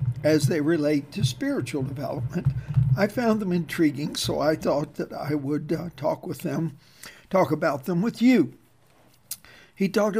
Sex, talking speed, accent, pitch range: male, 160 wpm, American, 150-190 Hz